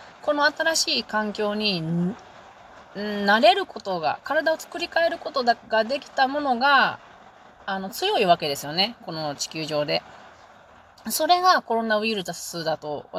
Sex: female